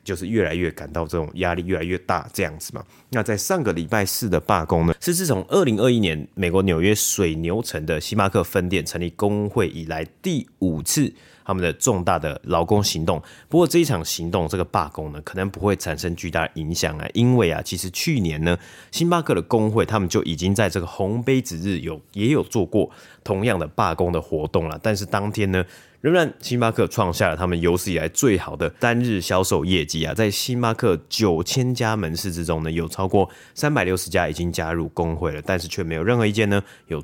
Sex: male